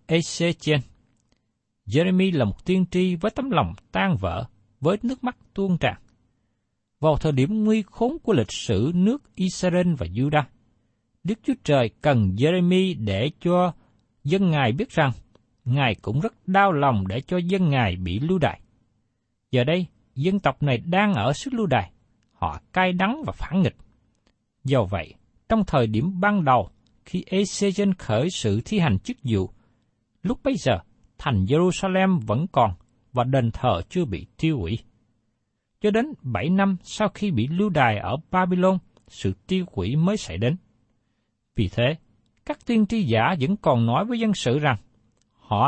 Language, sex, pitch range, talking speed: Vietnamese, male, 115-185 Hz, 165 wpm